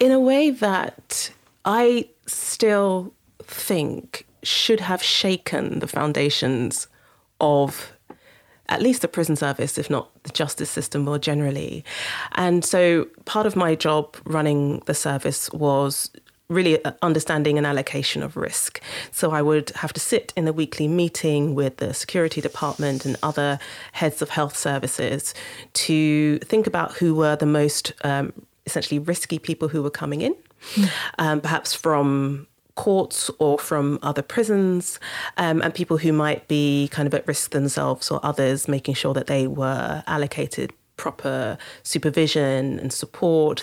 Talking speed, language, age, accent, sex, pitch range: 145 wpm, English, 30-49, British, female, 145-175 Hz